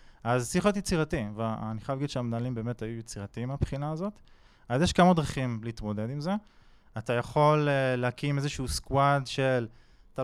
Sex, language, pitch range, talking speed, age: male, Hebrew, 115-155 Hz, 160 wpm, 20-39